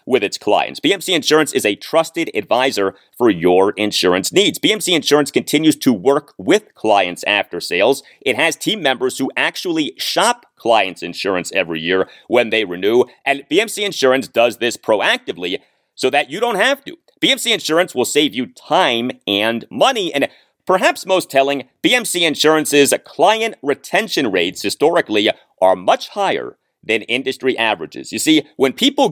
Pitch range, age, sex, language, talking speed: 120-200 Hz, 30-49, male, English, 155 wpm